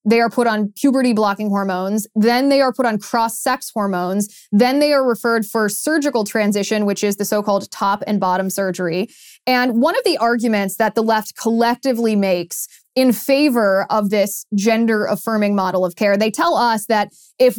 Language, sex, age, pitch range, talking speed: English, female, 20-39, 205-245 Hz, 175 wpm